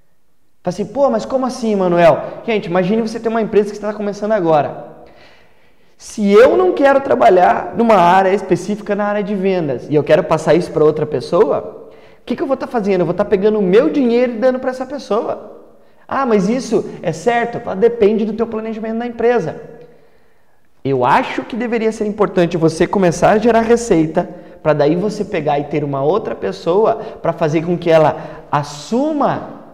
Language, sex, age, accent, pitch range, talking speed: Portuguese, male, 20-39, Brazilian, 170-230 Hz, 195 wpm